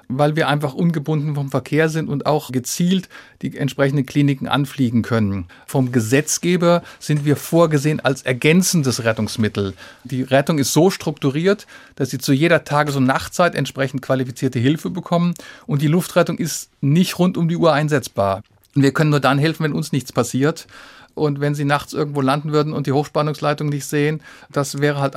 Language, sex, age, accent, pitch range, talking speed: German, male, 50-69, German, 130-160 Hz, 175 wpm